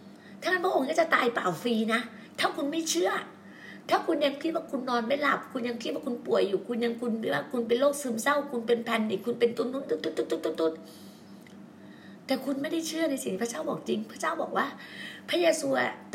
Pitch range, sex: 235-295 Hz, female